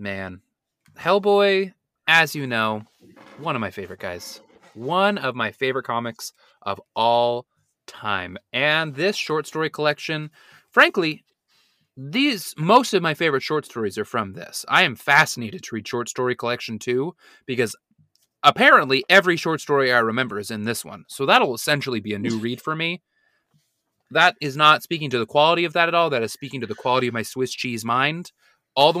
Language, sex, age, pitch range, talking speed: English, male, 20-39, 115-160 Hz, 180 wpm